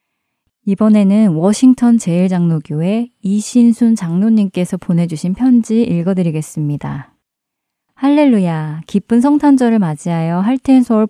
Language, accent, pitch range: Korean, native, 170-220 Hz